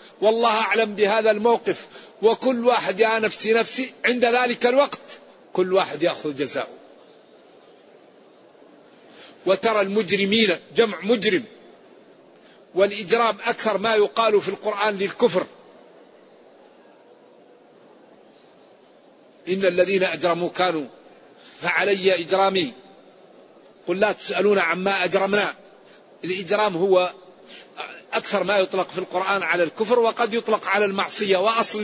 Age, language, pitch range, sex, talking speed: 50-69, Arabic, 195-225 Hz, male, 100 wpm